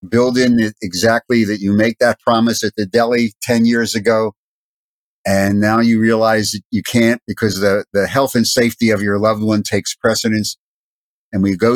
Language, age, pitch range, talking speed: English, 50-69, 100-120 Hz, 185 wpm